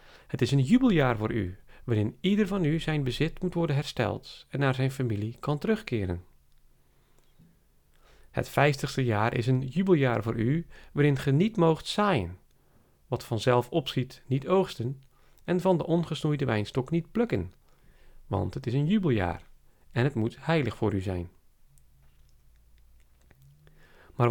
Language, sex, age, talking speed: Dutch, male, 40-59, 145 wpm